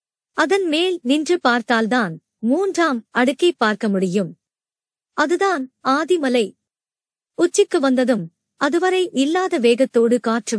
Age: 50-69